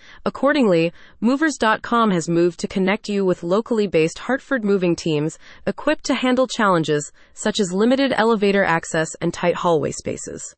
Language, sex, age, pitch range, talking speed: English, female, 30-49, 175-235 Hz, 140 wpm